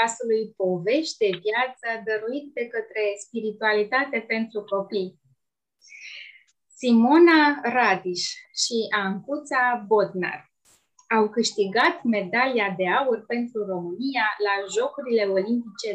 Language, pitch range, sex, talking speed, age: Romanian, 205-275 Hz, female, 95 wpm, 20-39